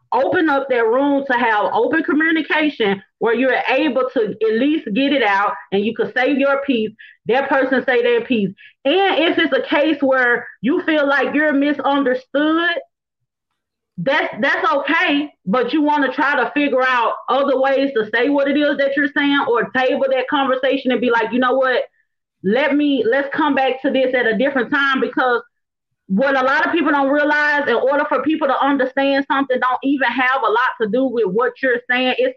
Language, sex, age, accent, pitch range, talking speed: English, female, 30-49, American, 240-285 Hz, 200 wpm